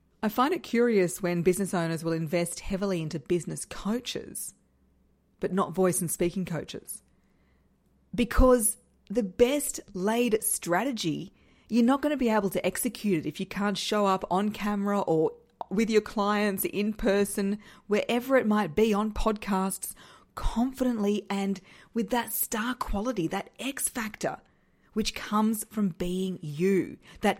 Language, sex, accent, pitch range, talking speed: English, female, Australian, 175-220 Hz, 145 wpm